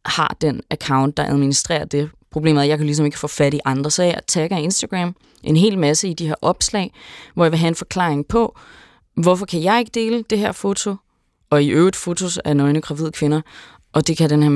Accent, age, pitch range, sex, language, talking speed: native, 20-39, 155-205 Hz, female, Danish, 225 wpm